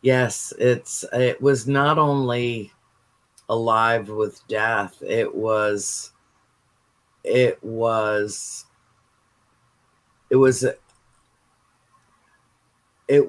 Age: 50-69